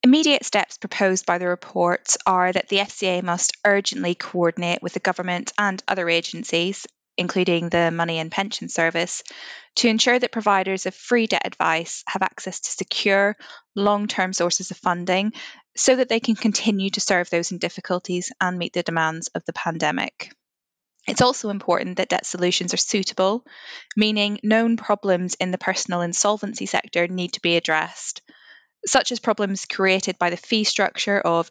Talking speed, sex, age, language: 165 wpm, female, 10-29, English